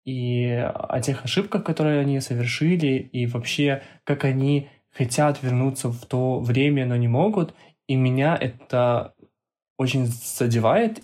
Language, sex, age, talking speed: Russian, male, 20-39, 130 wpm